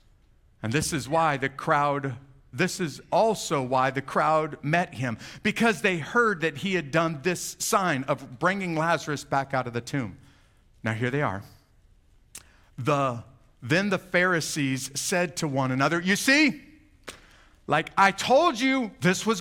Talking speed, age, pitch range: 155 wpm, 50-69, 140-195 Hz